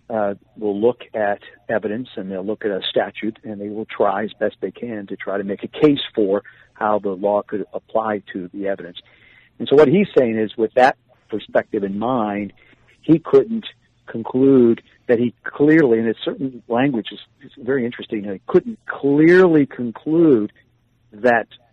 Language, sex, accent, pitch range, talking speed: English, male, American, 105-130 Hz, 175 wpm